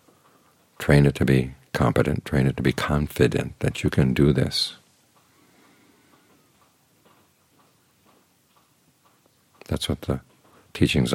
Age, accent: 50-69, American